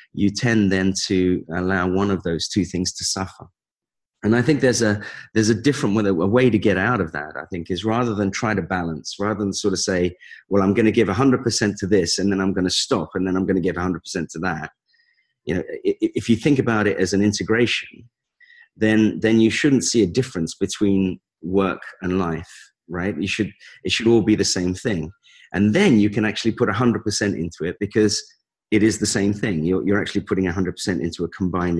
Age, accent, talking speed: 30-49, British, 225 wpm